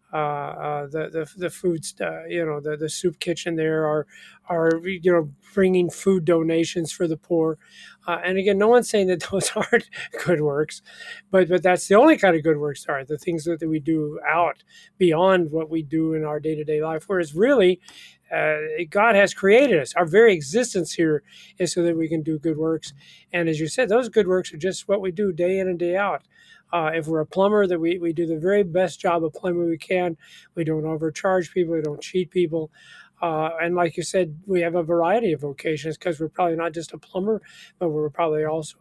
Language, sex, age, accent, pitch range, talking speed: English, male, 40-59, American, 160-195 Hz, 220 wpm